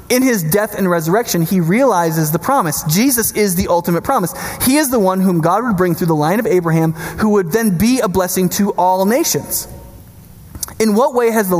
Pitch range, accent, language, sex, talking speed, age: 165-220 Hz, American, English, male, 210 wpm, 20-39